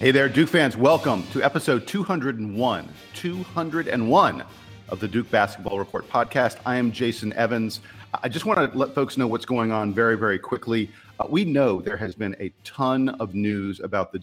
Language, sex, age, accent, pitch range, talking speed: English, male, 50-69, American, 100-120 Hz, 185 wpm